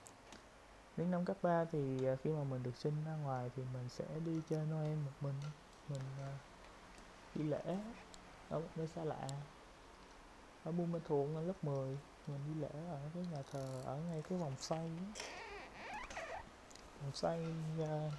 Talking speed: 160 wpm